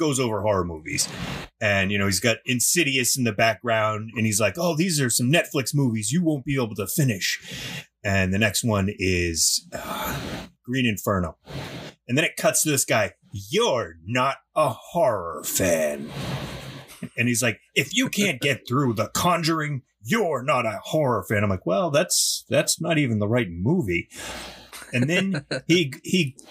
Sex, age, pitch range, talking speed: male, 30-49, 100-150 Hz, 175 wpm